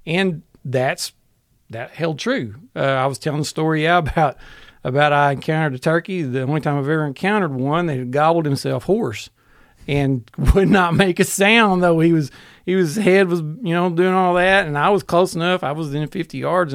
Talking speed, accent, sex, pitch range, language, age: 210 wpm, American, male, 130-160 Hz, English, 40-59